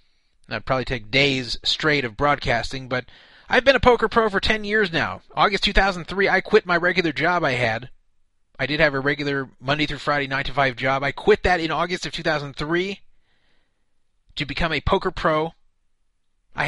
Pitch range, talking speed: 125-175 Hz, 185 wpm